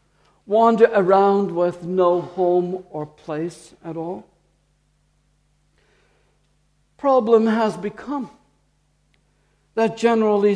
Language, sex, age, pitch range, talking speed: English, male, 60-79, 200-250 Hz, 80 wpm